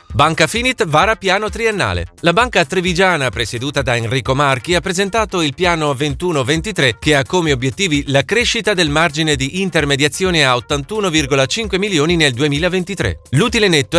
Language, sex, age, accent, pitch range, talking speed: Italian, male, 30-49, native, 140-195 Hz, 145 wpm